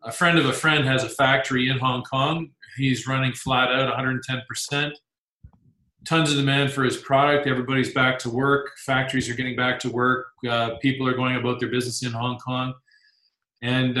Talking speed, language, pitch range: 185 wpm, English, 120-140 Hz